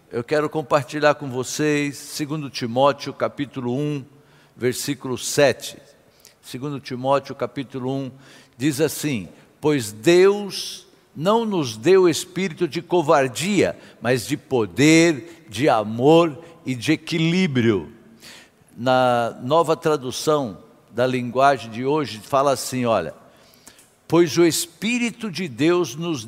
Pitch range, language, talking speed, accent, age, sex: 130-175 Hz, Portuguese, 110 wpm, Brazilian, 60-79, male